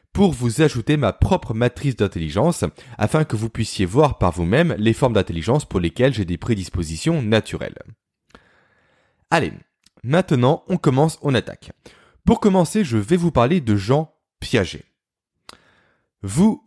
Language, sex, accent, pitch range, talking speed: French, male, French, 100-155 Hz, 140 wpm